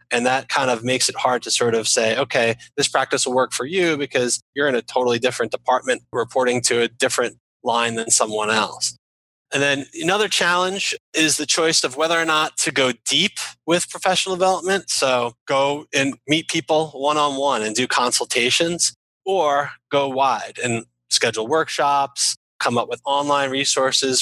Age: 20-39